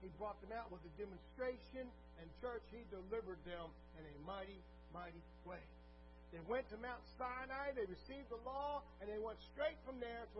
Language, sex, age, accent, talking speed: English, male, 50-69, American, 190 wpm